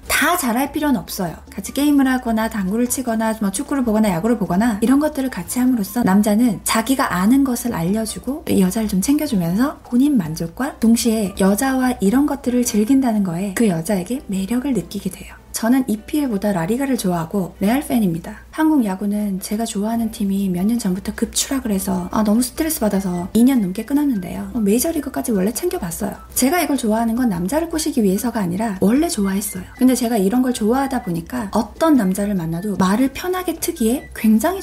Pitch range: 205-270 Hz